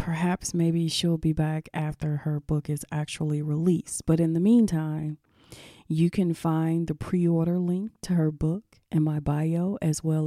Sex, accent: female, American